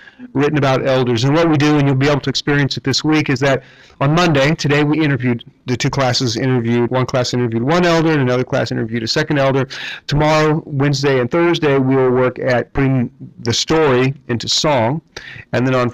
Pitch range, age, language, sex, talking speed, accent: 120-140 Hz, 40-59, English, male, 205 wpm, American